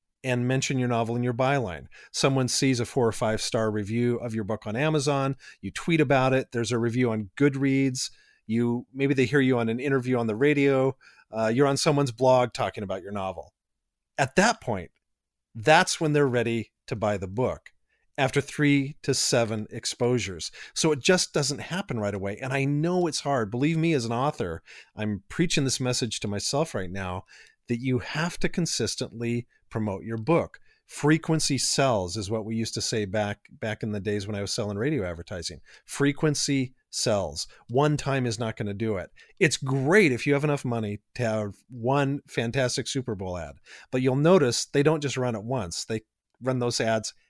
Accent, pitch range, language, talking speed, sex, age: American, 110-140 Hz, English, 195 wpm, male, 40-59